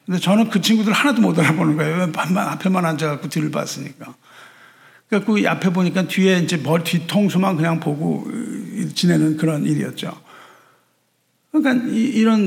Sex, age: male, 50-69